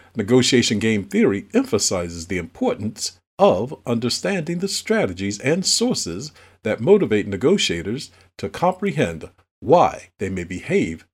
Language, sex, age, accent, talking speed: English, male, 50-69, American, 115 wpm